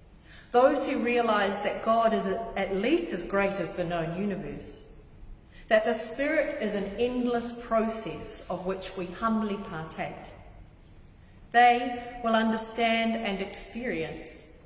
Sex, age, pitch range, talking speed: female, 40-59, 180-225 Hz, 125 wpm